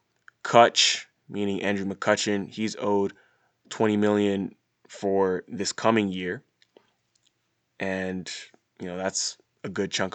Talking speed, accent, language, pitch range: 110 wpm, American, English, 95-110 Hz